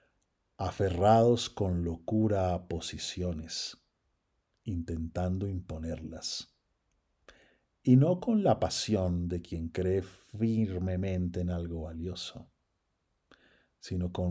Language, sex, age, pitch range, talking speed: Spanish, male, 50-69, 80-100 Hz, 90 wpm